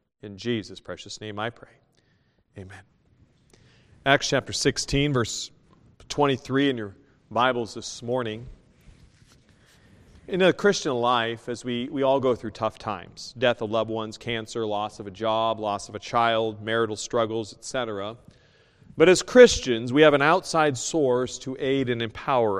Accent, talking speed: American, 150 wpm